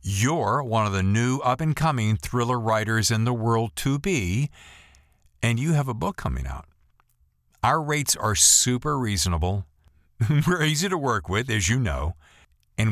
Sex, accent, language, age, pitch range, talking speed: male, American, English, 50-69, 90-125 Hz, 160 wpm